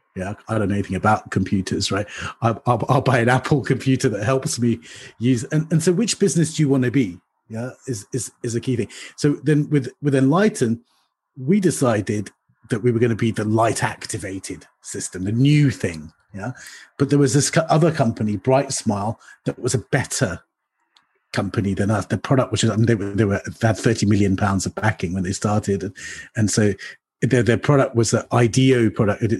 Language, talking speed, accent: English, 200 wpm, British